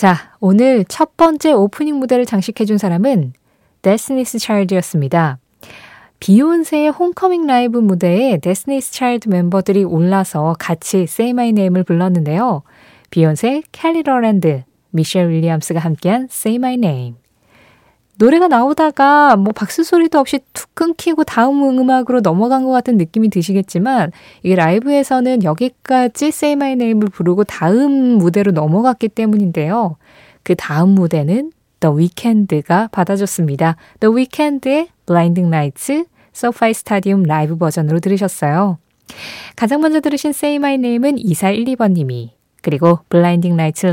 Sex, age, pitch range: female, 20-39, 170-255 Hz